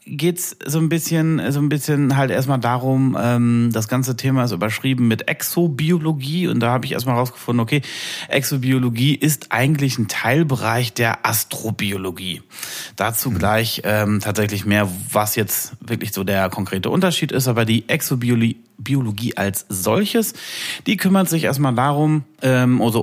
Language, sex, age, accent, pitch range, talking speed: German, male, 30-49, German, 110-145 Hz, 150 wpm